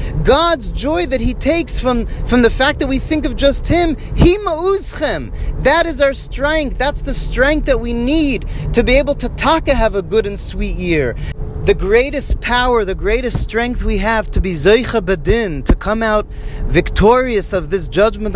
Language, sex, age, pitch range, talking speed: English, male, 30-49, 150-200 Hz, 185 wpm